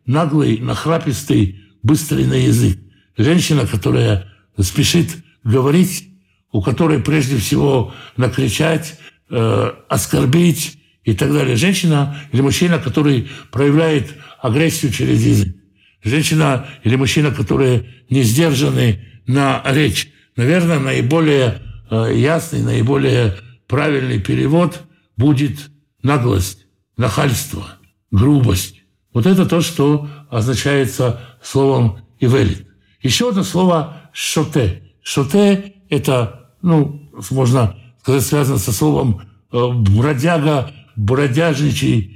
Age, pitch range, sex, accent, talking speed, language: 60-79, 120-160 Hz, male, American, 95 wpm, Russian